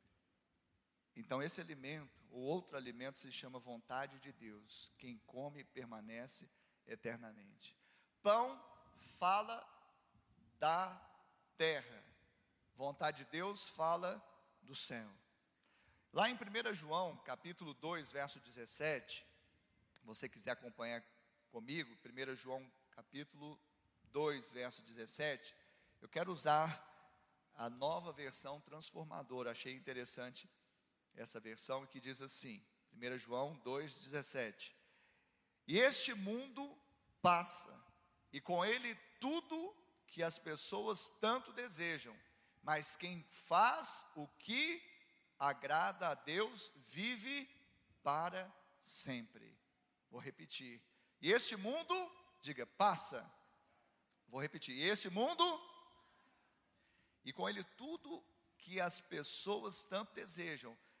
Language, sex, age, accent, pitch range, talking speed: Portuguese, male, 40-59, Brazilian, 125-190 Hz, 105 wpm